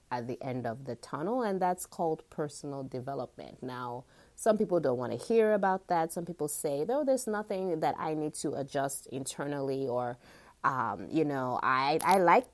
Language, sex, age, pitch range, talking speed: English, female, 30-49, 135-195 Hz, 190 wpm